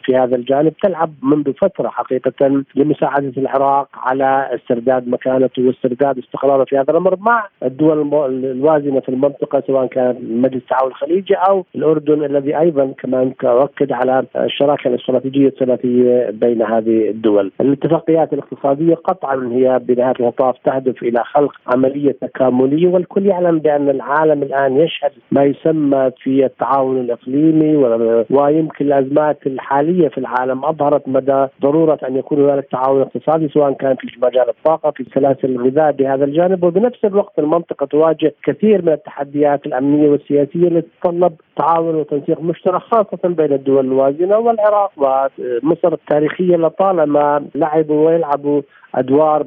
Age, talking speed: 50-69, 135 wpm